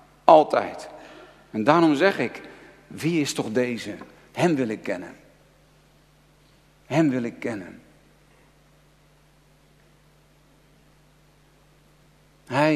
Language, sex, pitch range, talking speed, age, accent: Dutch, male, 130-195 Hz, 85 wpm, 50-69, Dutch